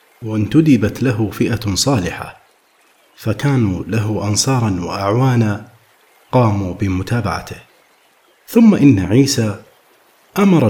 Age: 50-69